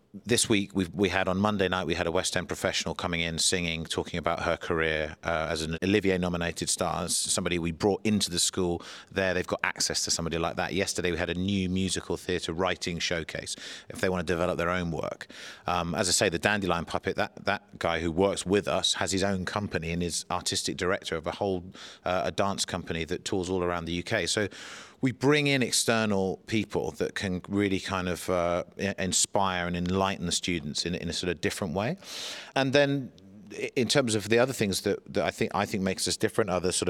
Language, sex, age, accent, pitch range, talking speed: English, male, 30-49, British, 90-105 Hz, 225 wpm